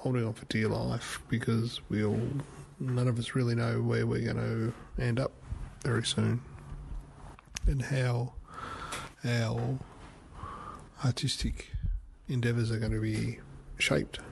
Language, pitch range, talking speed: English, 105-125 Hz, 130 wpm